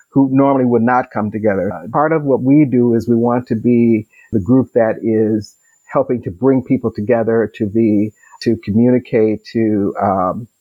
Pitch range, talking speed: 110-125 Hz, 175 wpm